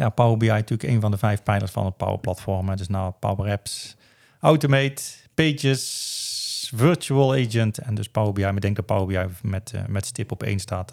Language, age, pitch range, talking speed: Dutch, 40-59, 100-120 Hz, 205 wpm